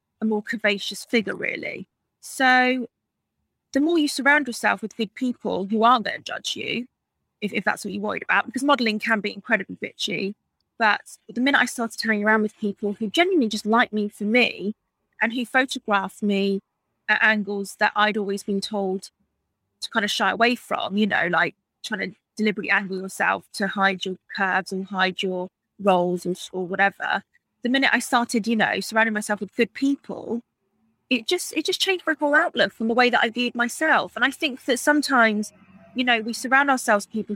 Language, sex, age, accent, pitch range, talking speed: English, female, 20-39, British, 205-240 Hz, 195 wpm